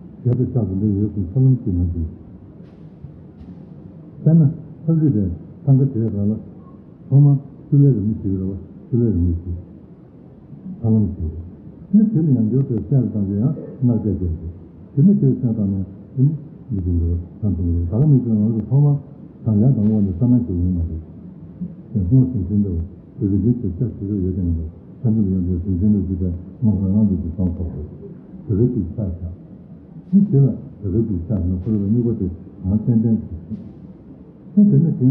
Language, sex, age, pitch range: Italian, male, 60-79, 95-125 Hz